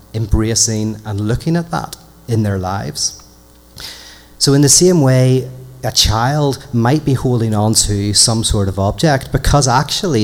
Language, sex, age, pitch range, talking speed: English, male, 30-49, 105-130 Hz, 150 wpm